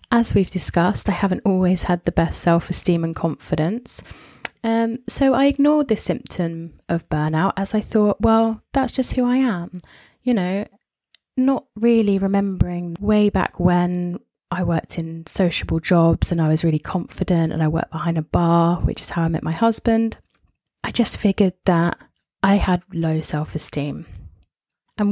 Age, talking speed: 20-39, 165 wpm